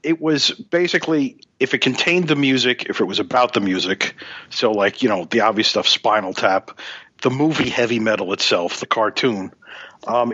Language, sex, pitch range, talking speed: English, male, 115-145 Hz, 180 wpm